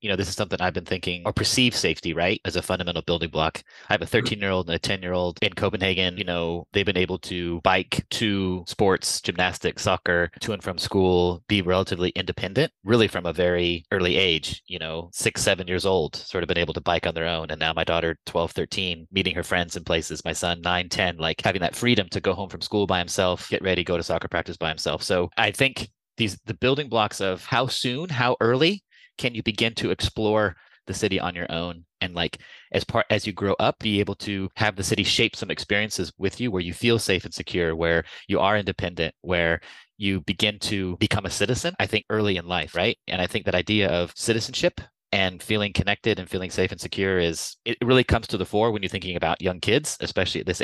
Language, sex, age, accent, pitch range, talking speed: English, male, 30-49, American, 90-105 Hz, 230 wpm